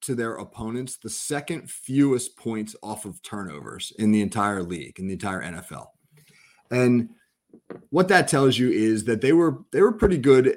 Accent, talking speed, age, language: American, 175 wpm, 30-49, English